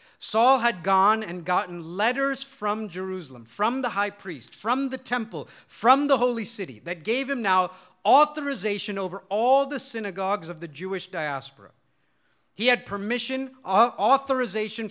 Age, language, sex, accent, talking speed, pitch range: 40-59, English, male, American, 145 wpm, 175-230 Hz